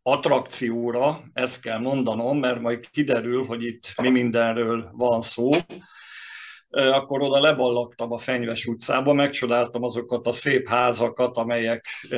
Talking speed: 125 wpm